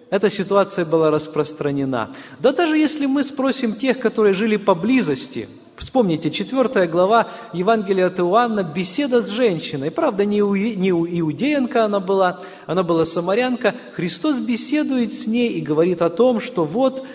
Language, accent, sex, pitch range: Russian, native, male, 165-235 Hz